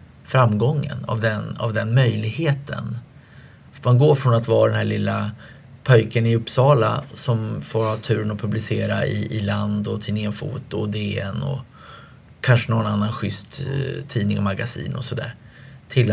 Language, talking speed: English, 165 wpm